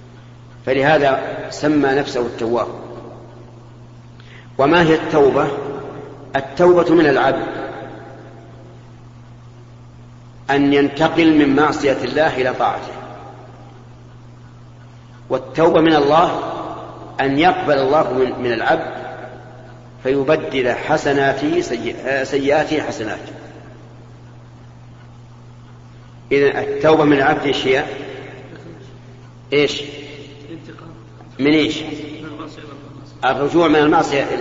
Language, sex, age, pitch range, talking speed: Arabic, male, 50-69, 120-145 Hz, 75 wpm